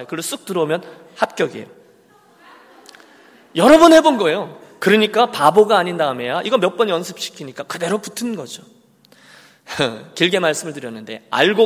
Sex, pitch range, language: male, 155-230 Hz, Korean